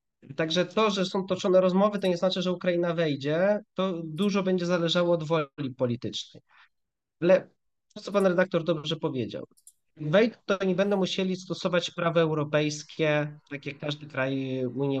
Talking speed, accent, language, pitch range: 155 wpm, native, Polish, 135-185 Hz